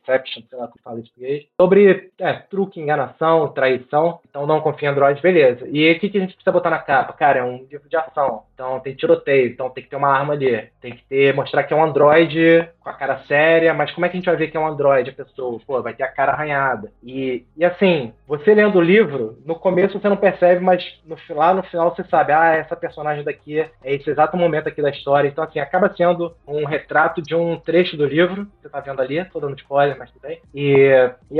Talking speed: 235 wpm